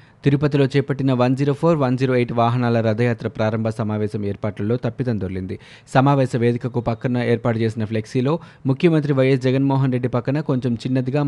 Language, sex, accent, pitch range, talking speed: Telugu, male, native, 115-135 Hz, 145 wpm